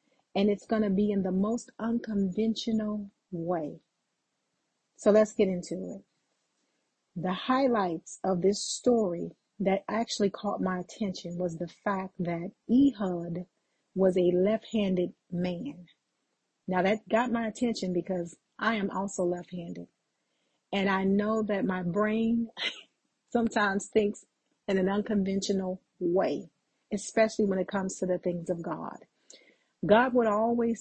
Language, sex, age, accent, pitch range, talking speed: English, female, 40-59, American, 185-220 Hz, 130 wpm